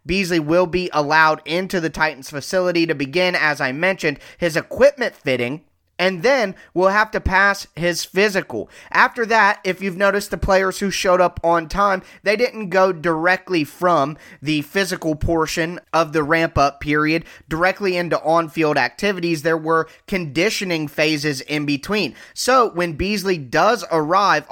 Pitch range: 155-195 Hz